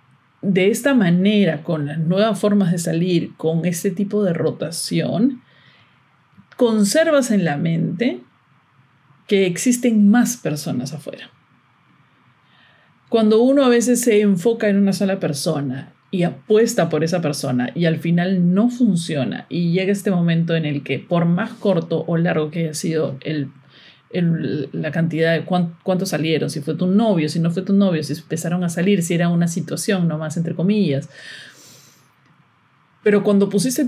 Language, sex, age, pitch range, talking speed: Spanish, male, 40-59, 165-215 Hz, 160 wpm